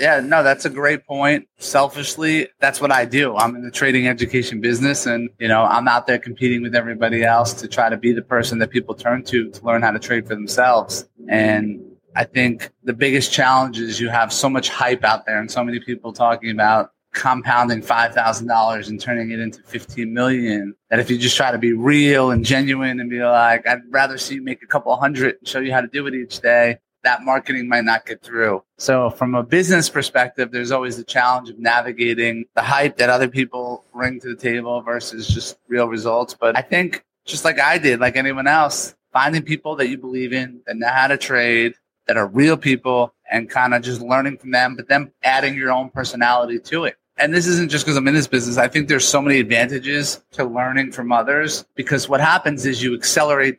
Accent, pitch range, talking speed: American, 120-135 Hz, 220 wpm